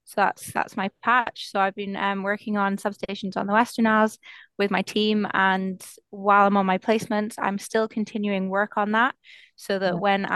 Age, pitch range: 20-39, 200-225 Hz